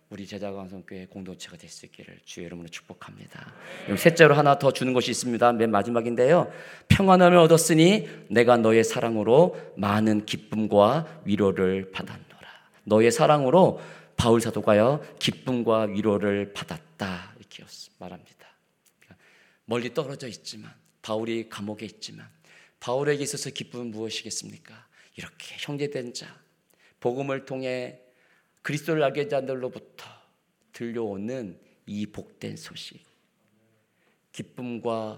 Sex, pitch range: male, 105-135 Hz